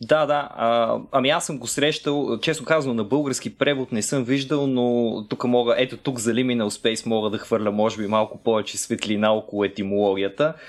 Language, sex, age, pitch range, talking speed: Bulgarian, male, 20-39, 110-135 Hz, 190 wpm